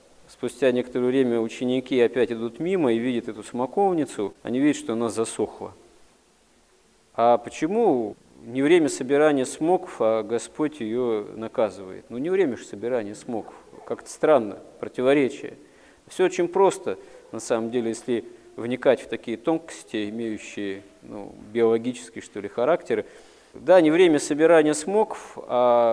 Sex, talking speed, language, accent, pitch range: male, 130 wpm, Russian, native, 115-165 Hz